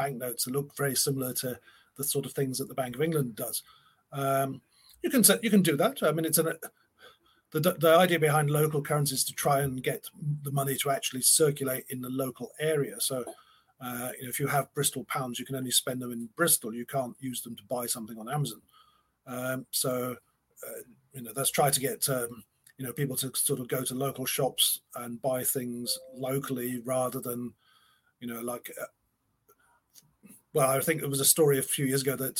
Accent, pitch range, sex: British, 125-145 Hz, male